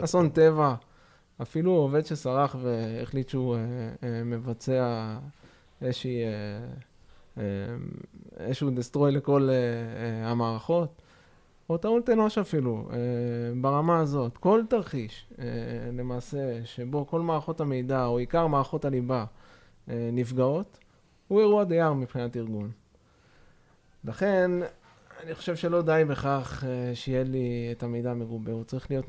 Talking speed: 100 wpm